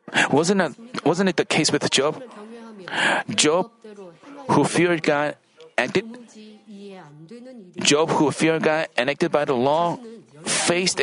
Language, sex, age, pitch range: Korean, male, 40-59, 145-180 Hz